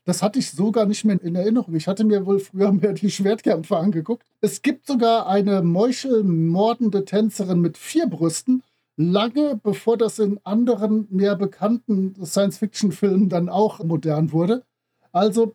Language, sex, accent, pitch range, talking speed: German, male, German, 170-215 Hz, 150 wpm